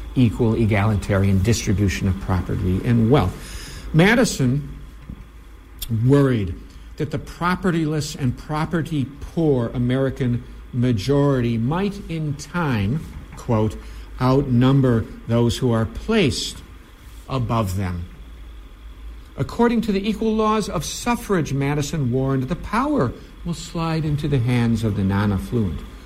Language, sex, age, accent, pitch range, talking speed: English, male, 60-79, American, 105-140 Hz, 110 wpm